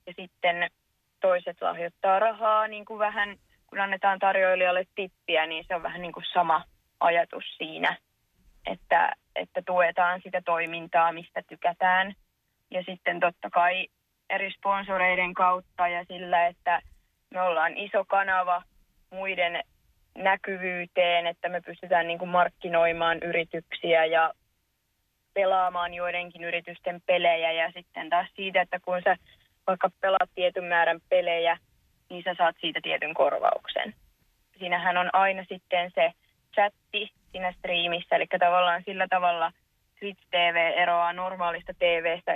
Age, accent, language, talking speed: 20-39, native, Finnish, 130 wpm